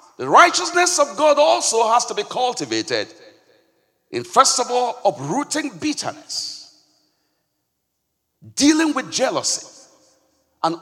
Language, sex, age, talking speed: English, male, 50-69, 105 wpm